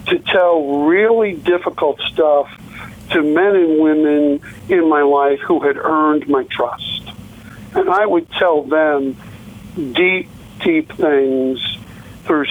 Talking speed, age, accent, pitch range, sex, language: 125 wpm, 60-79, American, 140-160 Hz, male, English